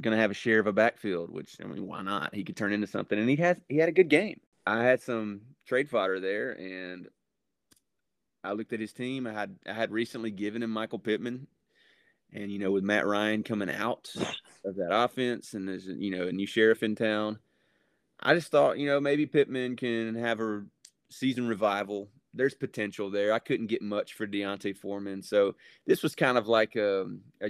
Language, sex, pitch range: English, male, 100-120 Hz